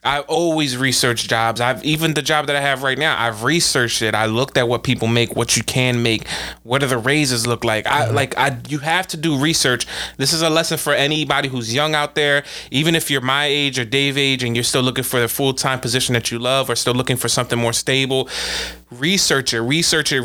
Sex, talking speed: male, 240 wpm